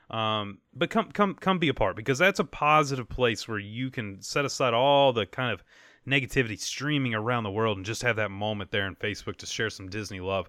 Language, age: English, 30-49